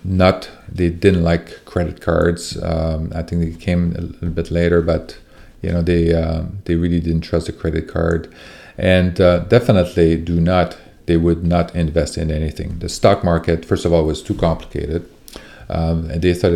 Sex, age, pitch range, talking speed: male, 40-59, 80-90 Hz, 185 wpm